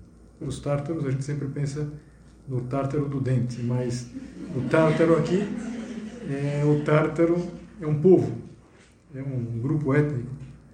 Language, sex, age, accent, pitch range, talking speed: Portuguese, male, 50-69, Brazilian, 125-175 Hz, 140 wpm